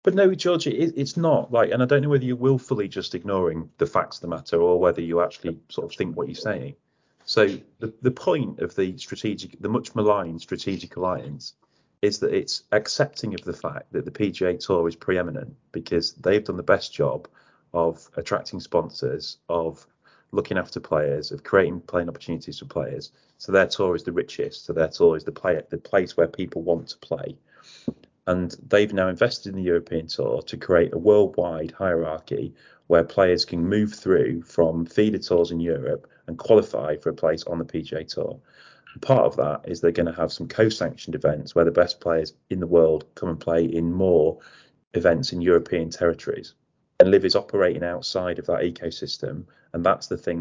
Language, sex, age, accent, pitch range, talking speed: English, male, 30-49, British, 85-140 Hz, 195 wpm